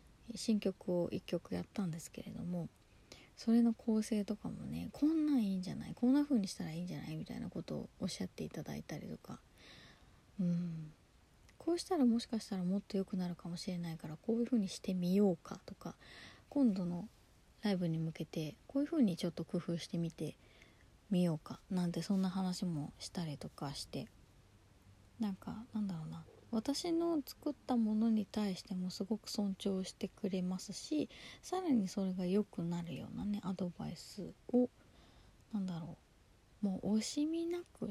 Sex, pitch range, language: female, 170-220 Hz, Japanese